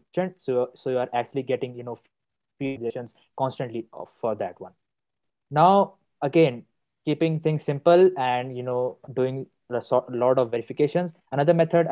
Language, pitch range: English, 125-140 Hz